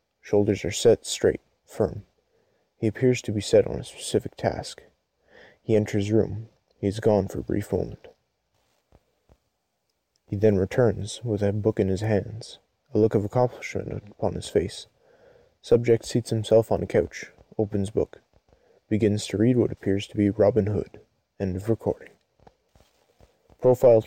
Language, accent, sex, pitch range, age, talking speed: English, American, male, 100-125 Hz, 20-39, 150 wpm